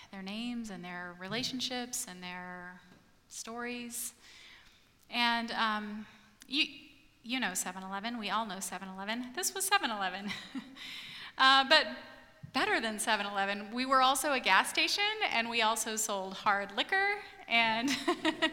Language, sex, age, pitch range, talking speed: English, female, 30-49, 210-275 Hz, 125 wpm